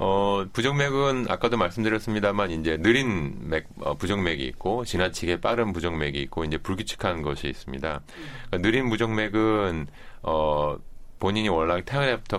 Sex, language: male, Korean